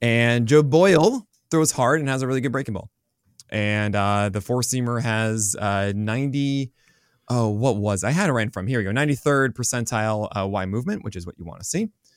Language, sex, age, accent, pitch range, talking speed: English, male, 20-39, American, 100-130 Hz, 210 wpm